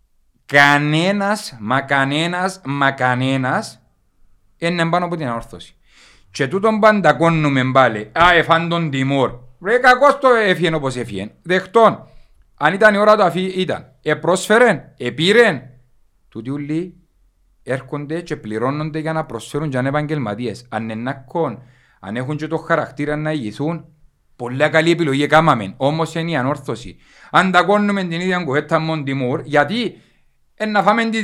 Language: Greek